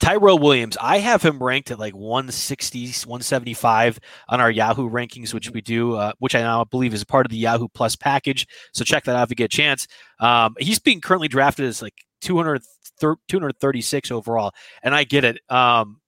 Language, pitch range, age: English, 120-155 Hz, 20-39